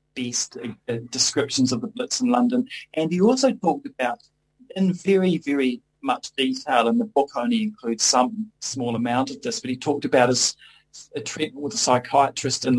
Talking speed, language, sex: 185 wpm, English, male